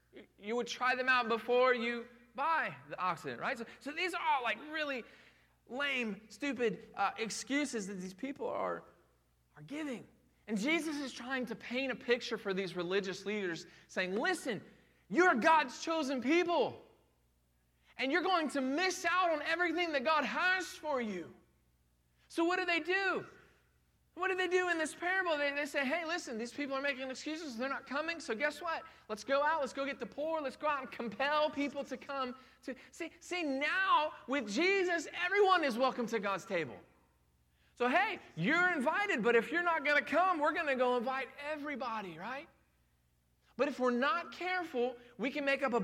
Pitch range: 225-320 Hz